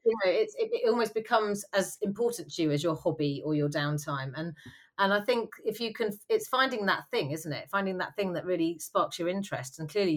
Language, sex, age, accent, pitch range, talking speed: English, female, 30-49, British, 150-200 Hz, 235 wpm